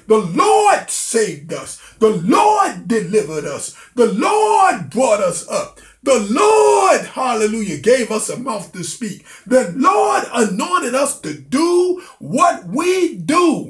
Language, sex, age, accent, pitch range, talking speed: English, male, 50-69, American, 225-360 Hz, 135 wpm